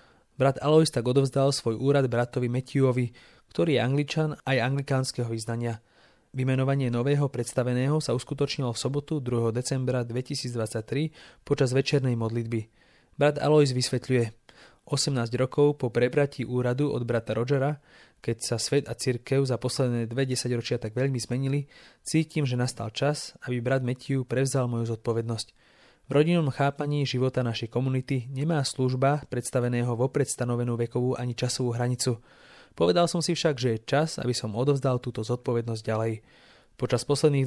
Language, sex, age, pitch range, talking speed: English, male, 20-39, 120-140 Hz, 145 wpm